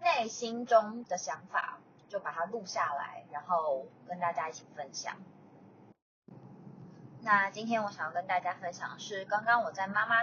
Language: Chinese